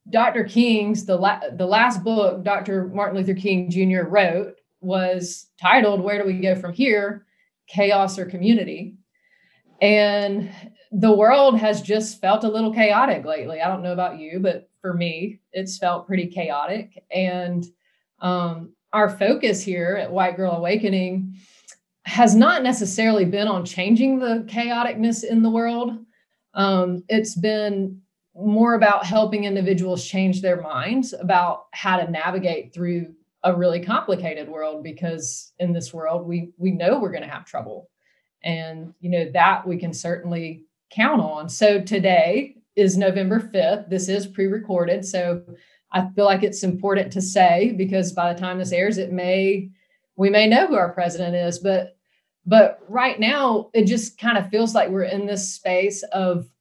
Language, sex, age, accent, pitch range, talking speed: English, female, 30-49, American, 180-210 Hz, 160 wpm